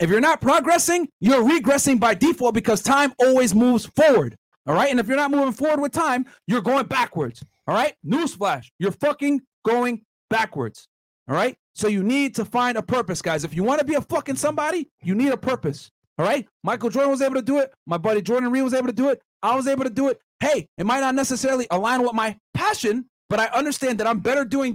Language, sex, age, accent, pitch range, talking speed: English, male, 40-59, American, 205-270 Hz, 230 wpm